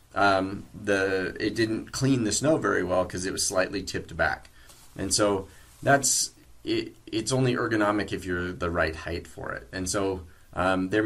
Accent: American